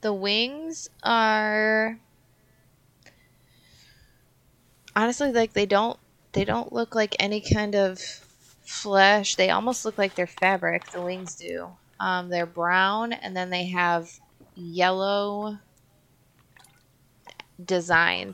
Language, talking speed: English, 110 wpm